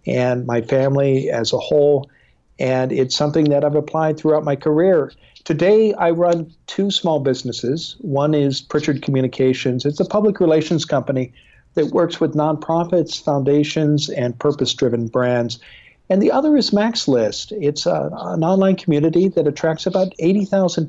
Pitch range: 130-160 Hz